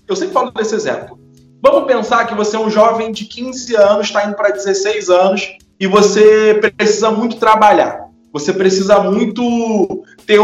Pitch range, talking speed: 185-225 Hz, 165 wpm